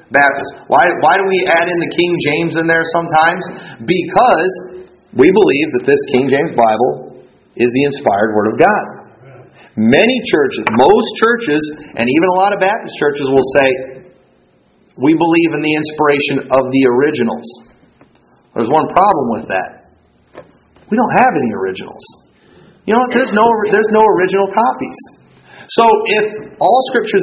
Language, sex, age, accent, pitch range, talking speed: English, male, 40-59, American, 145-215 Hz, 155 wpm